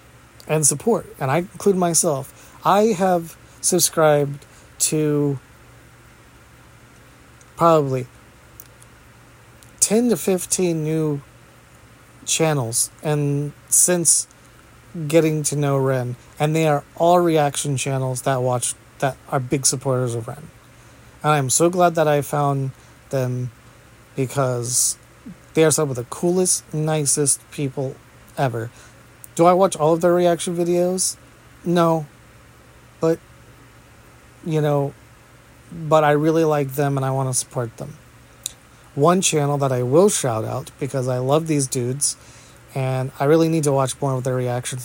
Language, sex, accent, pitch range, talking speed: English, male, American, 125-155 Hz, 130 wpm